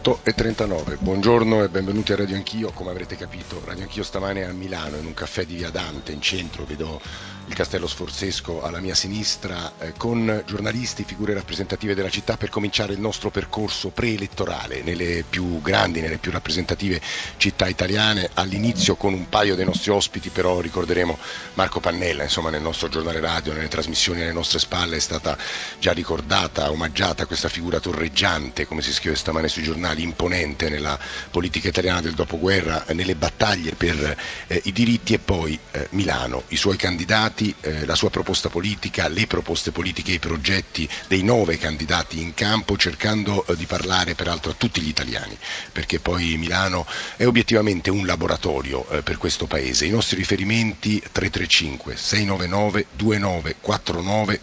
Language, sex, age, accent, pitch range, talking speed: Italian, male, 50-69, native, 85-100 Hz, 165 wpm